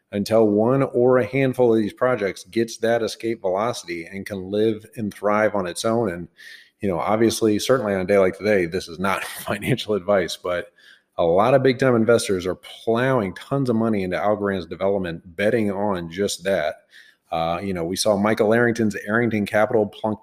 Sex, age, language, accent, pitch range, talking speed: male, 30-49, English, American, 100-120 Hz, 190 wpm